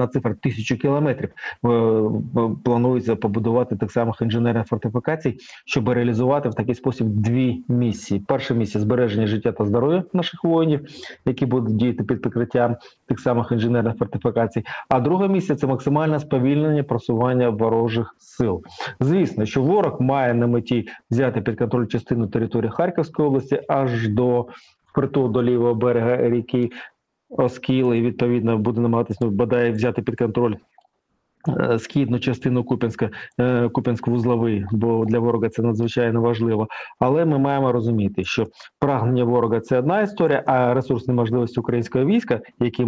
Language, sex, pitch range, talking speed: Ukrainian, male, 115-135 Hz, 145 wpm